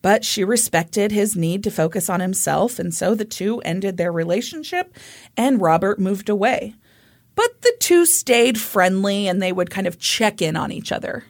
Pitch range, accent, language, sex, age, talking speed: 185-280 Hz, American, English, female, 30-49, 185 wpm